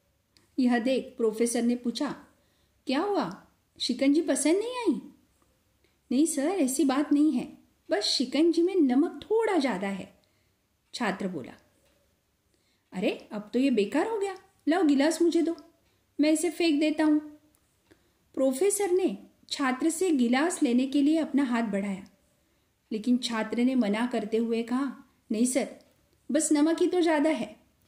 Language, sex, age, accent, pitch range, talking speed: Marathi, female, 50-69, native, 235-310 Hz, 145 wpm